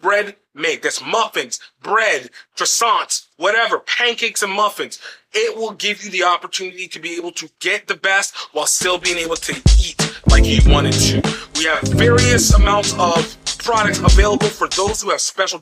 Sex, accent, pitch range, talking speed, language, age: male, American, 180-265 Hz, 175 wpm, English, 30-49